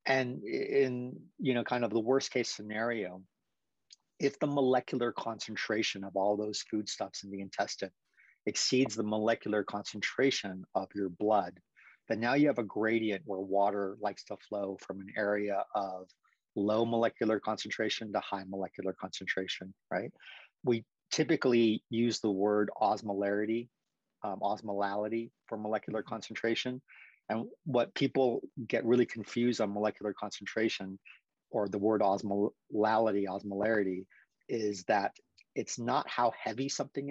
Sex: male